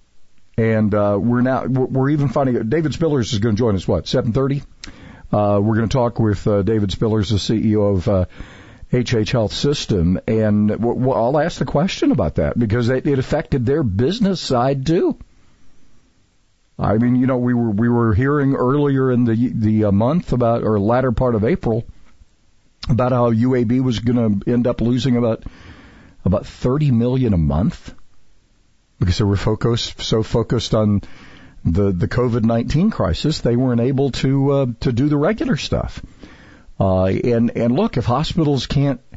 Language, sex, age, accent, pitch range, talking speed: English, male, 50-69, American, 105-135 Hz, 170 wpm